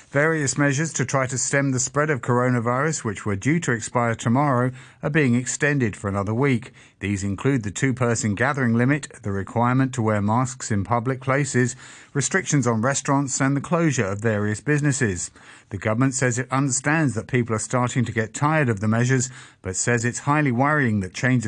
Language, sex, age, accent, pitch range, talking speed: English, male, 50-69, British, 115-140 Hz, 185 wpm